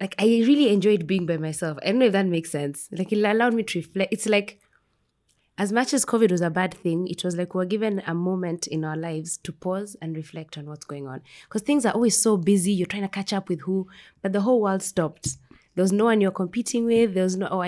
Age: 20-39